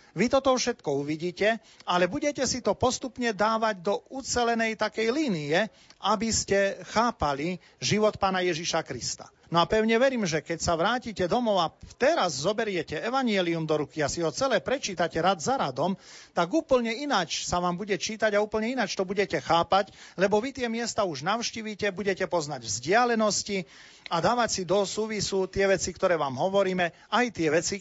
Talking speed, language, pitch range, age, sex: 170 wpm, Slovak, 155-220 Hz, 40-59, male